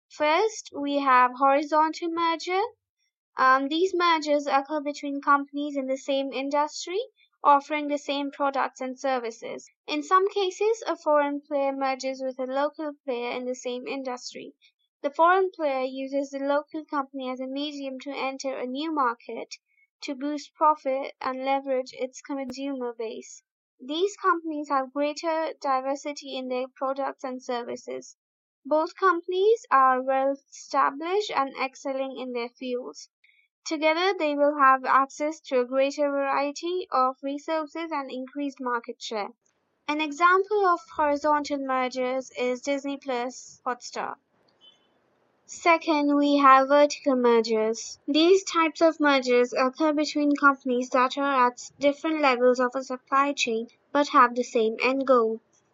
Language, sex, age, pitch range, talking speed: English, female, 20-39, 260-310 Hz, 140 wpm